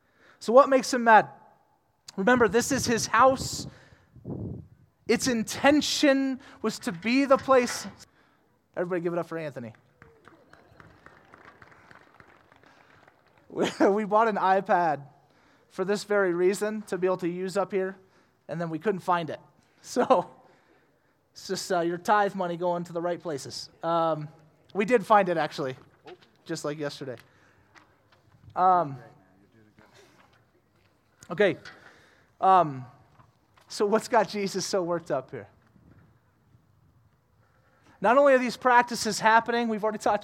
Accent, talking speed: American, 125 wpm